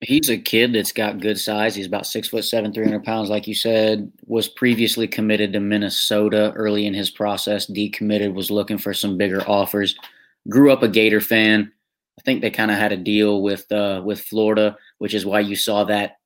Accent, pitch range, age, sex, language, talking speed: American, 105-120 Hz, 20-39, male, English, 210 wpm